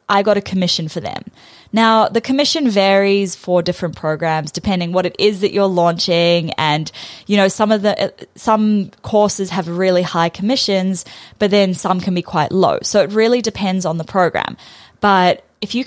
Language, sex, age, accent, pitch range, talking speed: English, female, 10-29, Australian, 175-235 Hz, 180 wpm